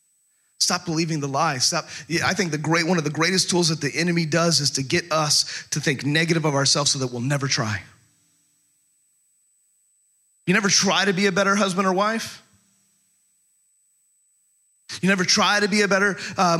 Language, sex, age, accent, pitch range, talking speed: English, male, 30-49, American, 145-195 Hz, 185 wpm